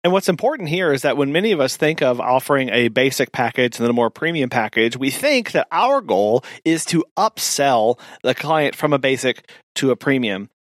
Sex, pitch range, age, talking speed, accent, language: male, 135-185 Hz, 40-59, 215 wpm, American, English